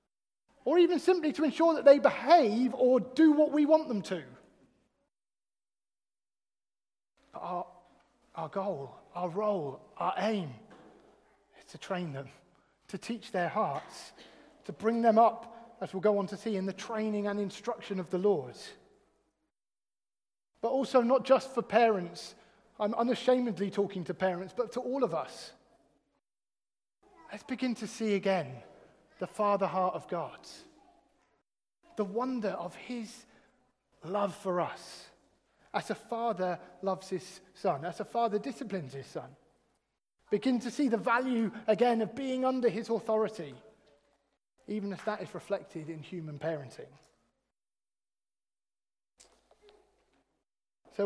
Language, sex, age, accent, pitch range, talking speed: English, male, 30-49, British, 185-245 Hz, 135 wpm